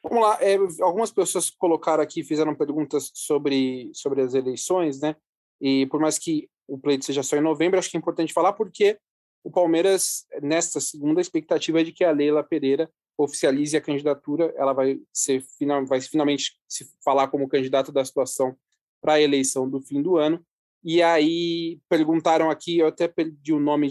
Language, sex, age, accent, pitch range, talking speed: Portuguese, male, 20-39, Brazilian, 140-180 Hz, 180 wpm